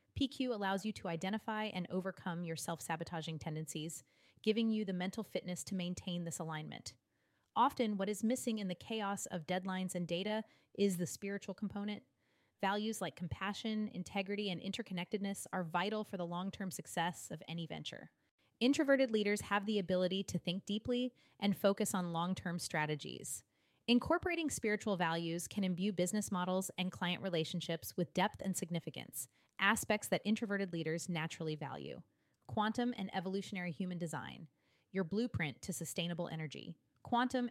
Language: English